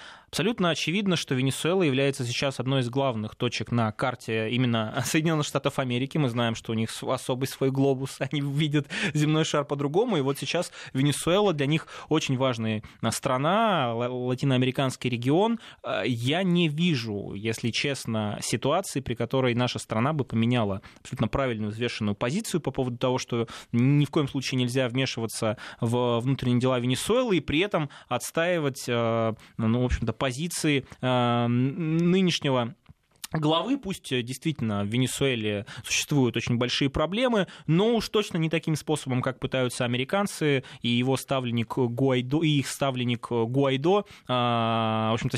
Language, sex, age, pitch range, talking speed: Russian, male, 20-39, 120-155 Hz, 140 wpm